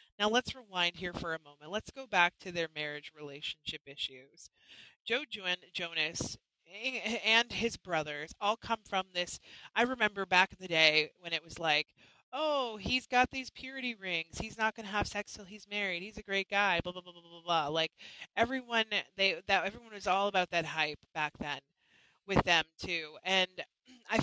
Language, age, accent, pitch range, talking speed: English, 30-49, American, 170-220 Hz, 185 wpm